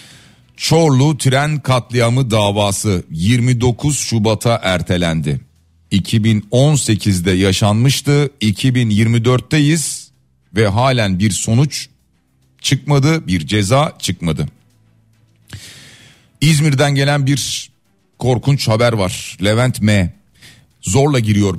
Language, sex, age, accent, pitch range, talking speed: Turkish, male, 50-69, native, 105-135 Hz, 80 wpm